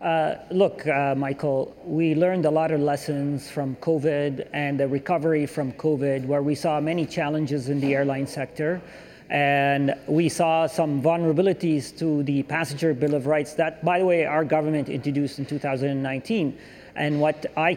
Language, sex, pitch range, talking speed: English, male, 145-175 Hz, 165 wpm